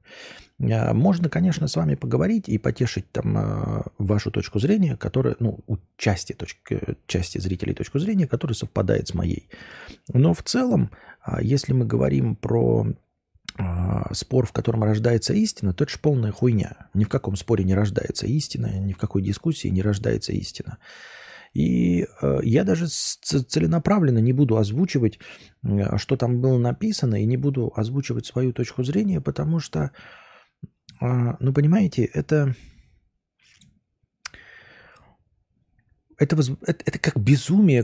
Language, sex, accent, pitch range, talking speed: Russian, male, native, 105-140 Hz, 125 wpm